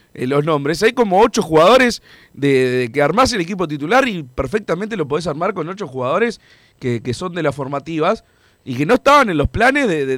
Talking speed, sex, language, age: 210 wpm, male, Spanish, 40-59